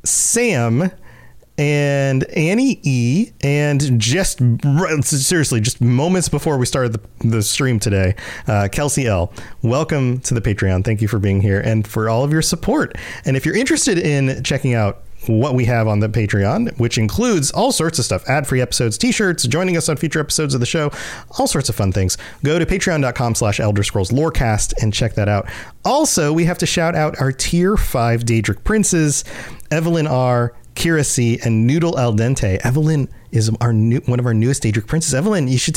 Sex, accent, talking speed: male, American, 190 wpm